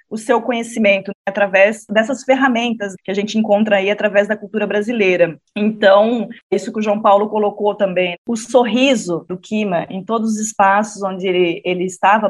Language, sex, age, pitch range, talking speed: Portuguese, female, 20-39, 190-225 Hz, 175 wpm